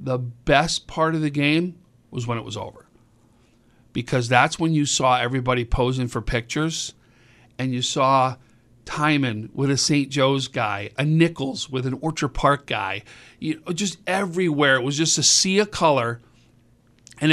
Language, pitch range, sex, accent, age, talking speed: English, 120-160 Hz, male, American, 50-69, 165 wpm